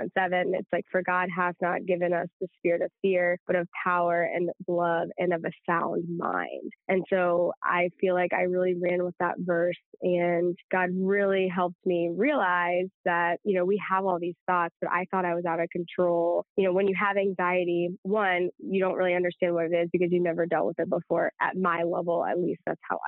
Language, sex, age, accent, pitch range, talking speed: English, female, 20-39, American, 175-185 Hz, 220 wpm